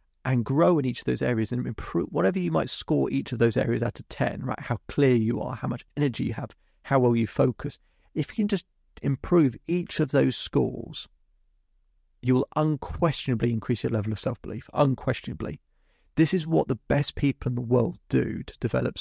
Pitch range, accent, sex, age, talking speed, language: 110-135 Hz, British, male, 30-49, 200 wpm, English